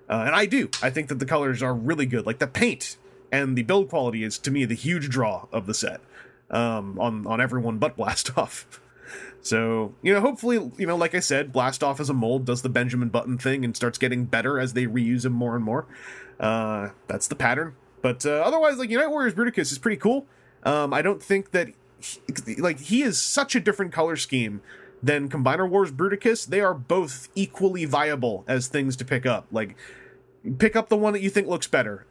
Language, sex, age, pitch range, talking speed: English, male, 30-49, 120-165 Hz, 215 wpm